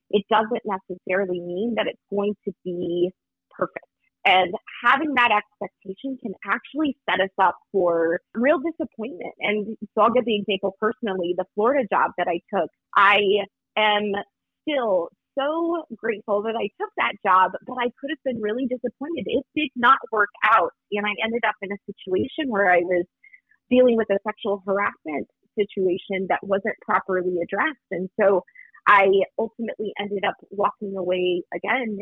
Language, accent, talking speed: English, American, 160 wpm